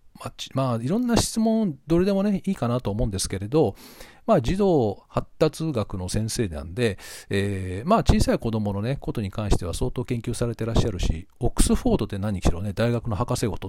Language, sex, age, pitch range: Japanese, male, 40-59, 100-155 Hz